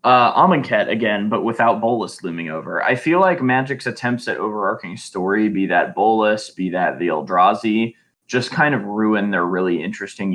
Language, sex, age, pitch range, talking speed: English, male, 20-39, 100-125 Hz, 175 wpm